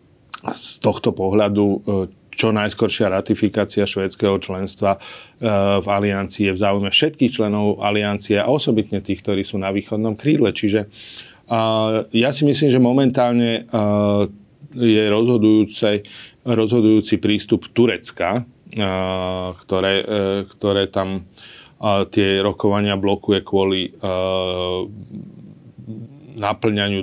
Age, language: 40-59, Slovak